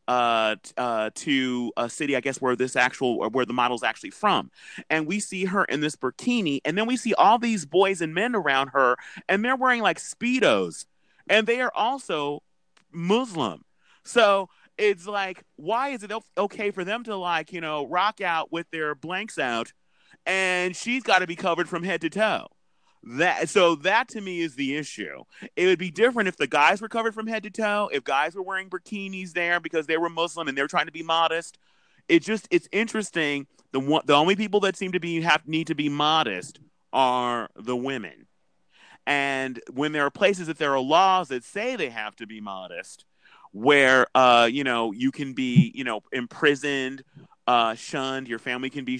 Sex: male